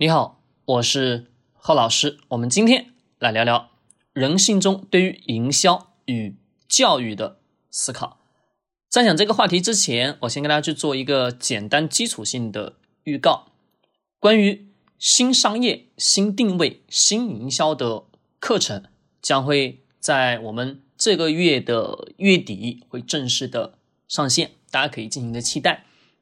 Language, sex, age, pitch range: Chinese, male, 20-39, 125-200 Hz